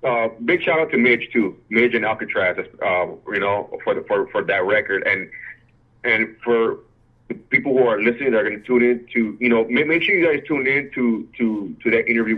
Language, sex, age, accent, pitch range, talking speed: English, male, 30-49, American, 110-125 Hz, 230 wpm